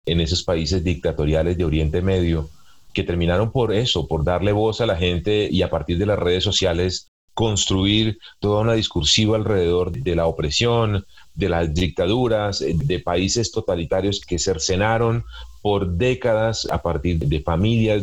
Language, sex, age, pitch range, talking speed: Spanish, male, 40-59, 85-110 Hz, 155 wpm